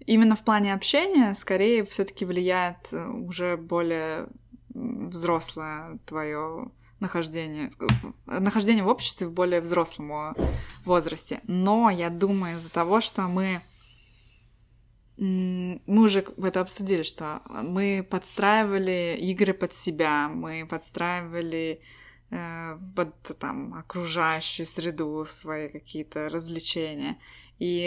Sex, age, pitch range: female, 20-39, 155-195 Hz